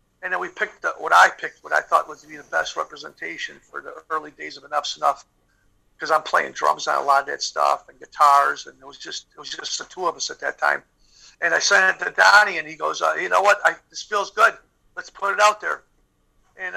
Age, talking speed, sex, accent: 50-69, 265 wpm, male, American